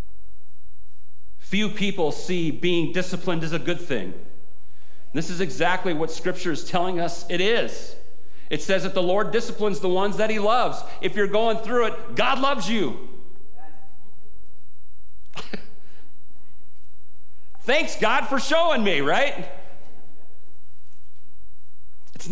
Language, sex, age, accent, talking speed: English, male, 50-69, American, 120 wpm